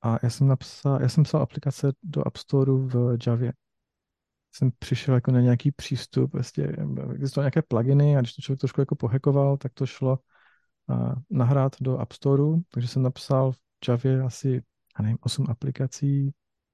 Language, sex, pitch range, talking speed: Czech, male, 125-140 Hz, 170 wpm